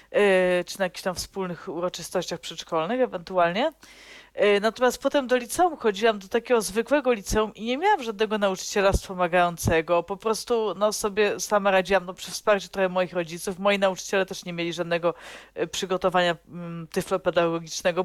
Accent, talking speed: native, 145 wpm